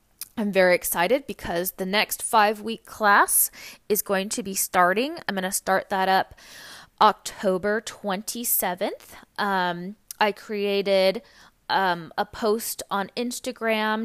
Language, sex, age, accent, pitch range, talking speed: English, female, 20-39, American, 185-215 Hz, 125 wpm